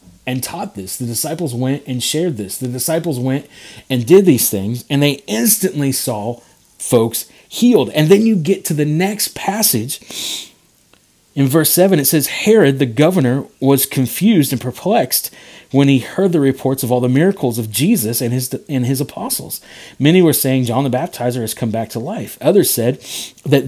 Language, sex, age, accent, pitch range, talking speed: English, male, 40-59, American, 125-165 Hz, 180 wpm